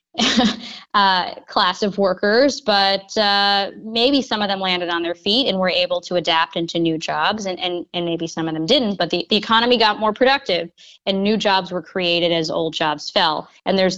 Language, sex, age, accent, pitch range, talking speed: English, female, 20-39, American, 175-215 Hz, 205 wpm